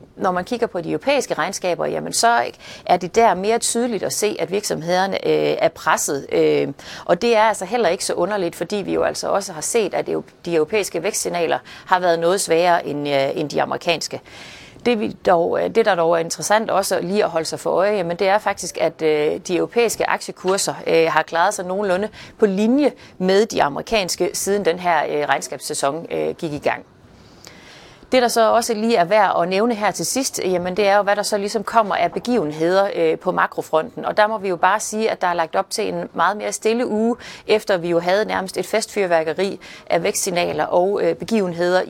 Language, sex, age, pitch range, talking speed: Danish, female, 30-49, 170-215 Hz, 210 wpm